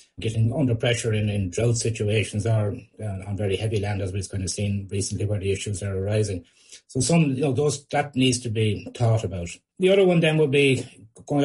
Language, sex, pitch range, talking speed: English, male, 105-120 Hz, 220 wpm